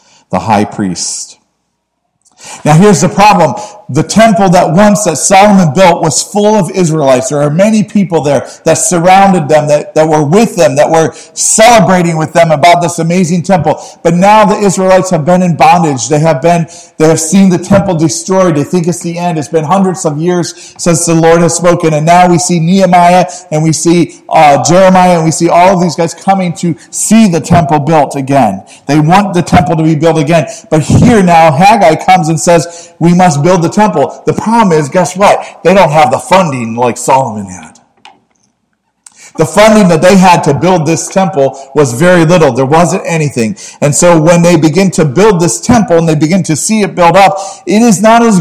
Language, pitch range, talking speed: English, 150-185 Hz, 205 wpm